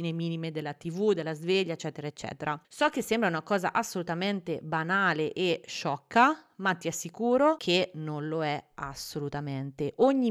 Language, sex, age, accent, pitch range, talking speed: Italian, female, 30-49, native, 165-220 Hz, 145 wpm